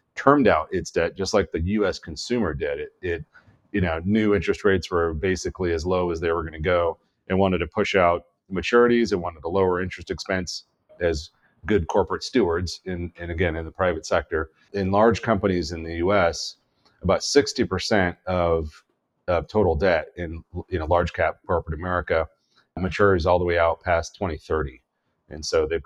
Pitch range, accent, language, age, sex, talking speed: 80-100 Hz, American, English, 30-49, male, 190 wpm